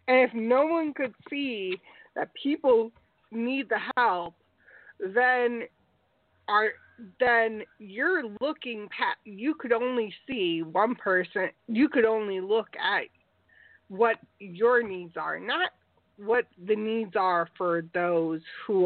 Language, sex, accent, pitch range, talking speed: English, female, American, 175-245 Hz, 125 wpm